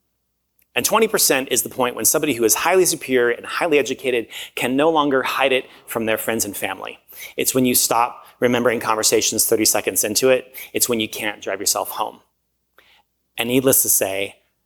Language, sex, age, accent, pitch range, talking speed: English, male, 30-49, American, 110-135 Hz, 185 wpm